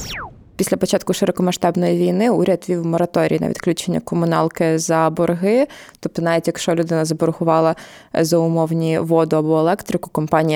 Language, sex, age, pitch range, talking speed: Ukrainian, female, 20-39, 160-175 Hz, 130 wpm